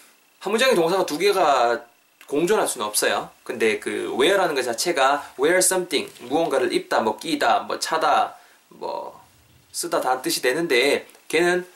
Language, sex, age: Korean, male, 20-39